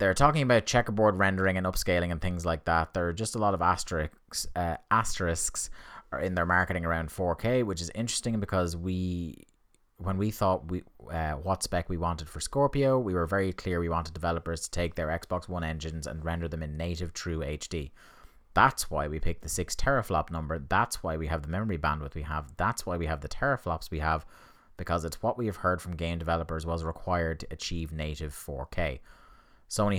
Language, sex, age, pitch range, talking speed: English, male, 30-49, 80-95 Hz, 205 wpm